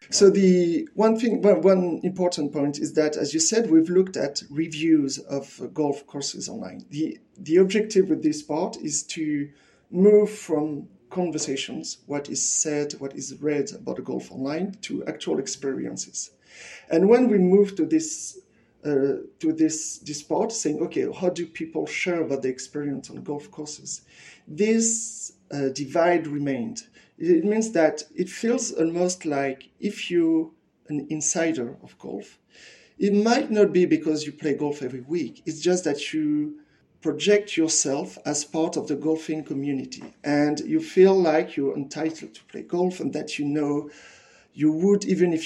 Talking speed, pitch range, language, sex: 165 wpm, 150-205 Hz, English, male